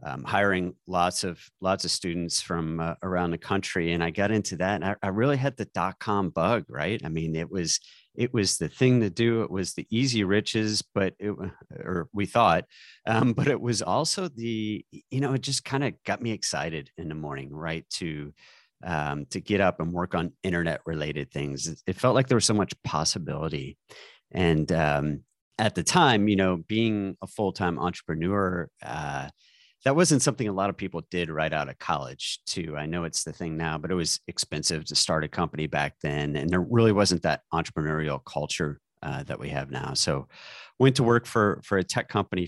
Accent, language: American, English